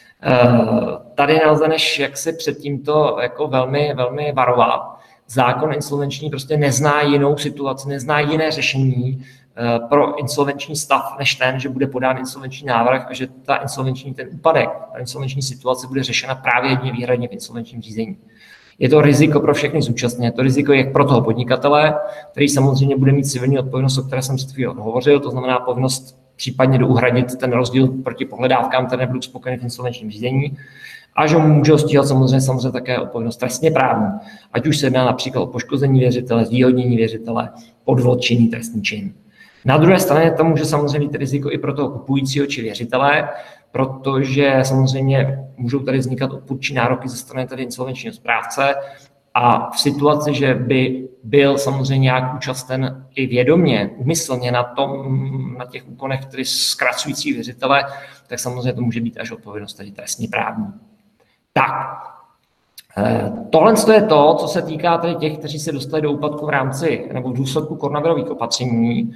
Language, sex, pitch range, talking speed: Czech, male, 125-145 Hz, 160 wpm